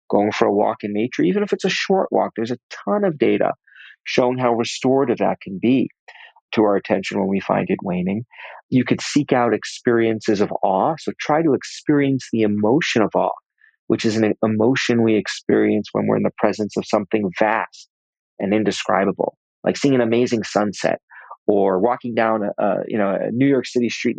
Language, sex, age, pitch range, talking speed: English, male, 40-59, 110-135 Hz, 190 wpm